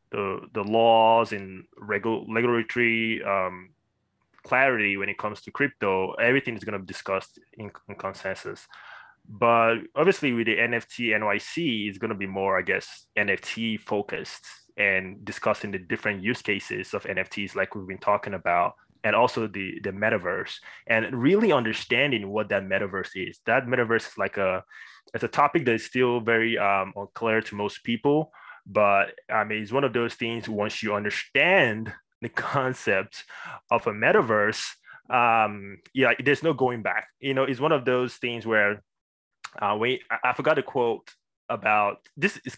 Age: 20-39